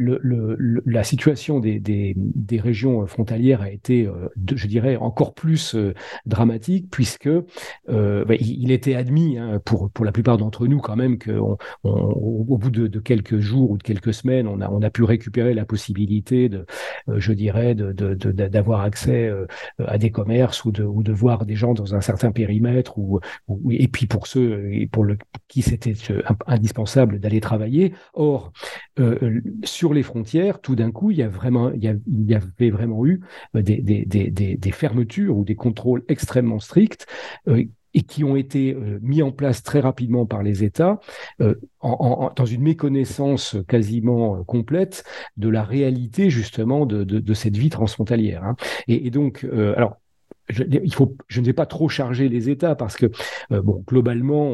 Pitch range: 110-130 Hz